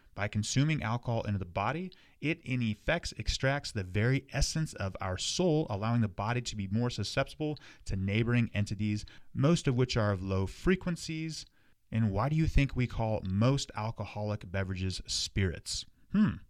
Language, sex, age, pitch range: English, male, 30-49, 105-140 Hz